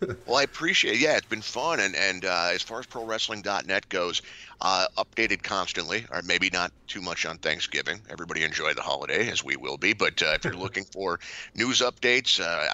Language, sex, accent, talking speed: English, male, American, 205 wpm